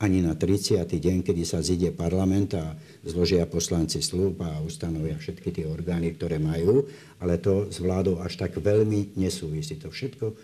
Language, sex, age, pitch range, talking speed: Slovak, male, 60-79, 80-95 Hz, 165 wpm